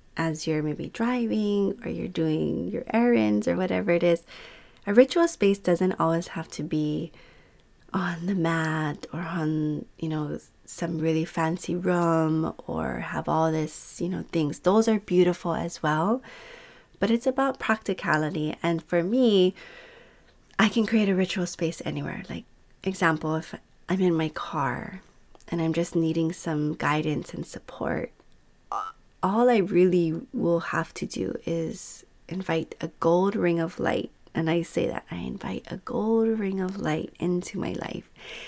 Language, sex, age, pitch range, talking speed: English, female, 30-49, 165-215 Hz, 155 wpm